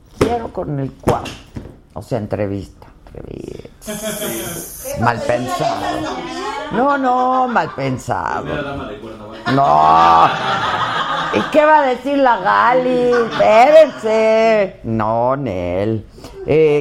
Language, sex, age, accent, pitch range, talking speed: Spanish, female, 50-69, Mexican, 120-170 Hz, 90 wpm